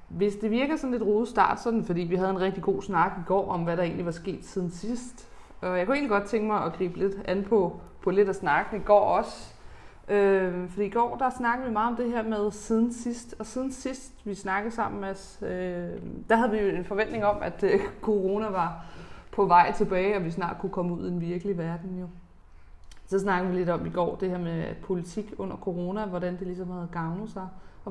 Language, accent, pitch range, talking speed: Danish, native, 175-205 Hz, 240 wpm